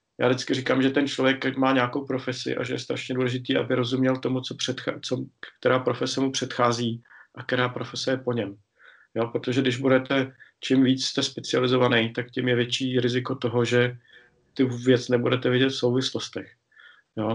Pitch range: 115-130 Hz